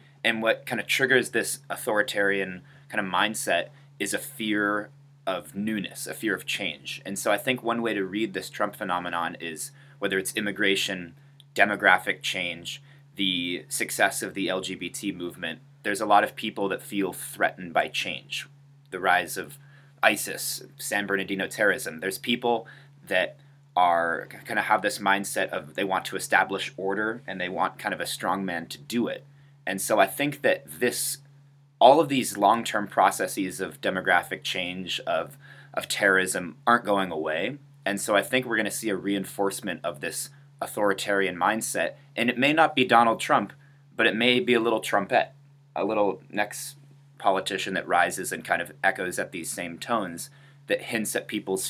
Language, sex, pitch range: English, male, 100-140 Hz